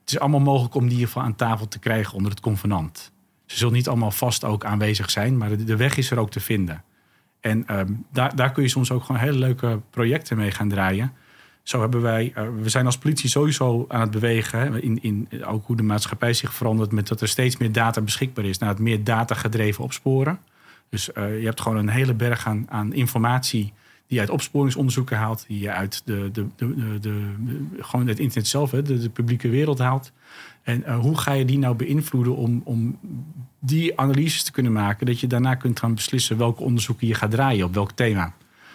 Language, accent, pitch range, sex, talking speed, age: Dutch, Dutch, 105-130 Hz, male, 220 wpm, 40-59